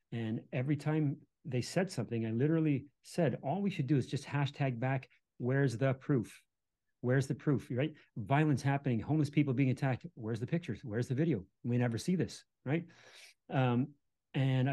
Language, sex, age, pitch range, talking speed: English, male, 30-49, 125-155 Hz, 175 wpm